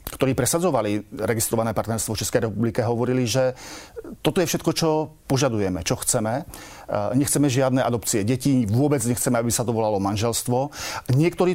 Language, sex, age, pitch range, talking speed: Slovak, male, 40-59, 115-140 Hz, 145 wpm